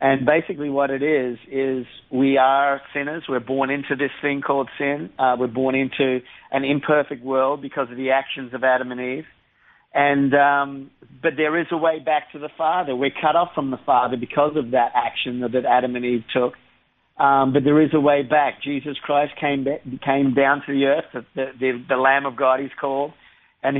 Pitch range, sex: 135-160 Hz, male